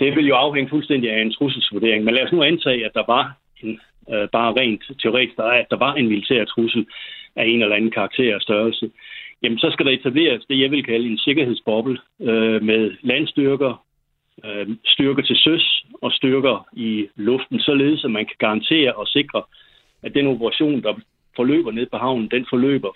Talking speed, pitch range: 195 wpm, 110-135 Hz